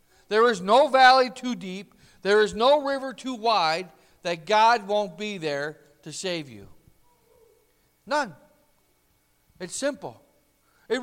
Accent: American